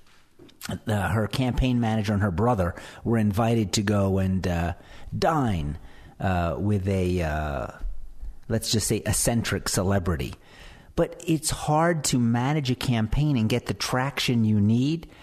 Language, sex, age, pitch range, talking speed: English, male, 50-69, 105-140 Hz, 140 wpm